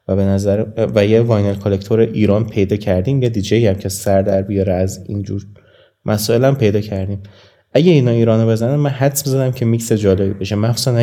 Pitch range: 100-115 Hz